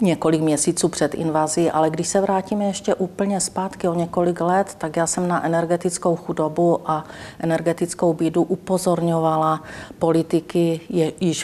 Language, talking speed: Czech, 135 wpm